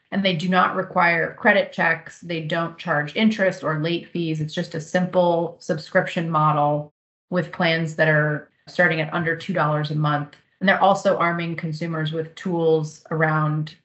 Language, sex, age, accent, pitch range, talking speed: English, female, 30-49, American, 155-185 Hz, 165 wpm